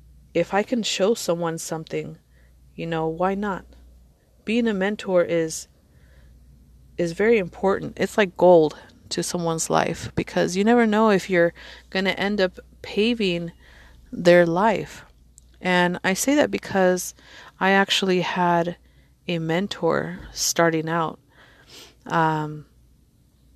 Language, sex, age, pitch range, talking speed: English, female, 30-49, 155-185 Hz, 125 wpm